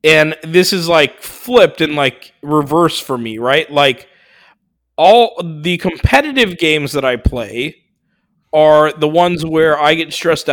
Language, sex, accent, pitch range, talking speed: English, male, American, 130-165 Hz, 150 wpm